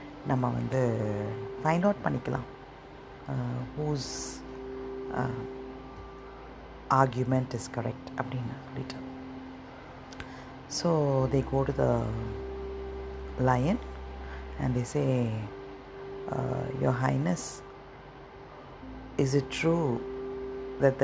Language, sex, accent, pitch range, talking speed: Tamil, female, native, 100-135 Hz, 65 wpm